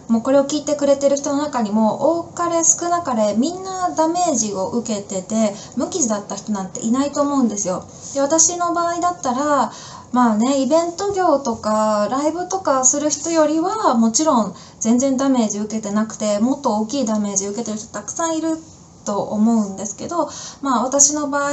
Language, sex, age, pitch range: Japanese, female, 20-39, 210-285 Hz